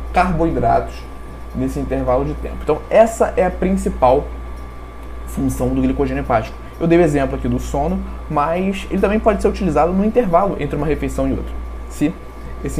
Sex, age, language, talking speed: male, 20-39, Portuguese, 170 wpm